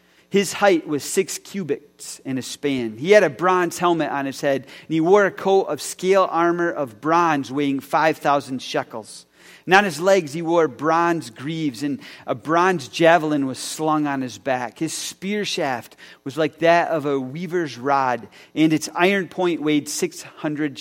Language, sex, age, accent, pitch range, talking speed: English, male, 40-59, American, 140-175 Hz, 180 wpm